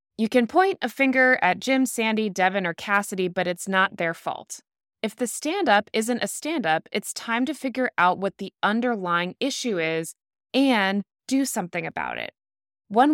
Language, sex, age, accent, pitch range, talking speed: English, female, 20-39, American, 190-265 Hz, 175 wpm